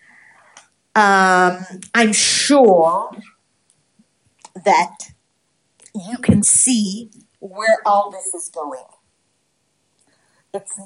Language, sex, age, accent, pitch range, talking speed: English, female, 50-69, American, 185-225 Hz, 70 wpm